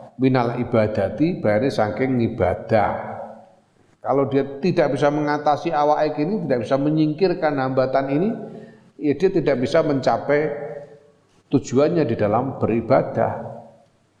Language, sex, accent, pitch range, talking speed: Indonesian, male, native, 115-145 Hz, 110 wpm